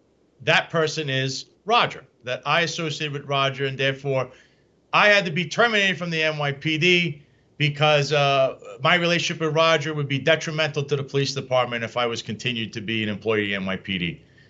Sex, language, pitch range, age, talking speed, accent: male, English, 140-175 Hz, 40-59, 180 wpm, American